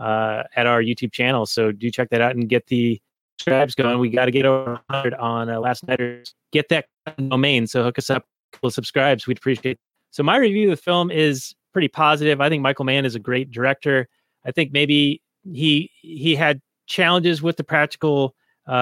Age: 30-49